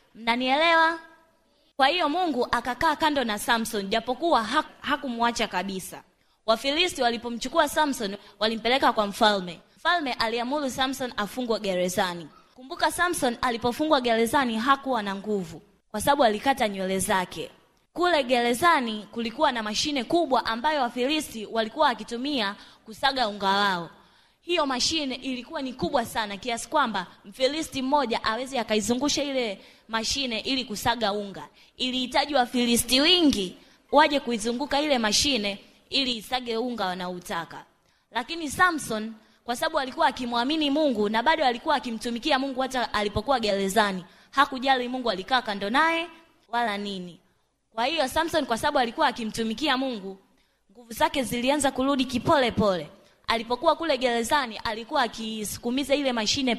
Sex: female